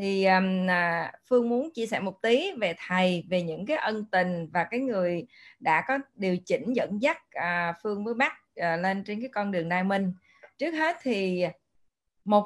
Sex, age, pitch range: female, 20-39, 180-240 Hz